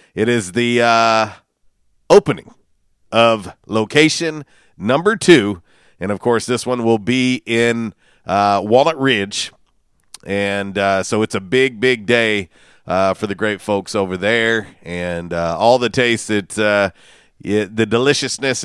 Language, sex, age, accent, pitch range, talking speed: English, male, 40-59, American, 95-120 Hz, 140 wpm